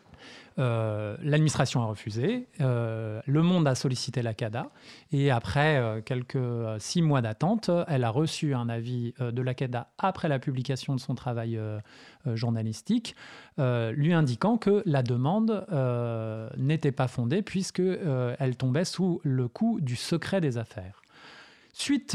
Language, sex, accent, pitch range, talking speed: French, male, French, 125-170 Hz, 145 wpm